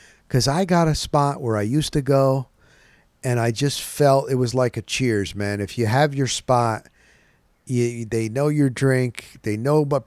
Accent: American